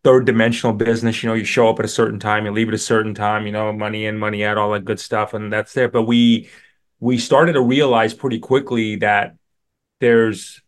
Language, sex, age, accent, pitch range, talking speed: English, male, 30-49, American, 110-125 Hz, 230 wpm